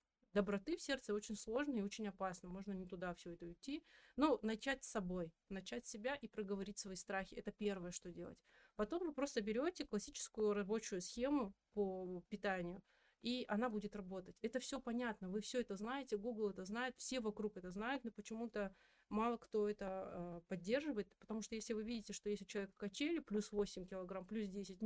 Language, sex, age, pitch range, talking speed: Russian, female, 30-49, 195-230 Hz, 185 wpm